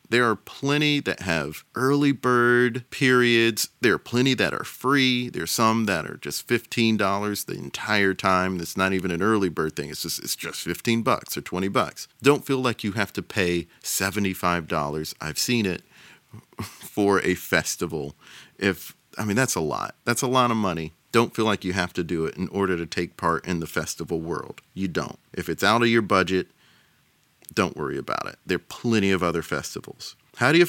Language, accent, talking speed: English, American, 200 wpm